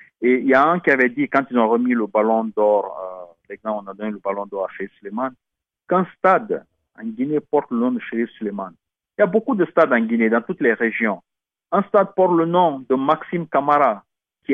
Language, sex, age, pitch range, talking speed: English, male, 50-69, 115-170 Hz, 240 wpm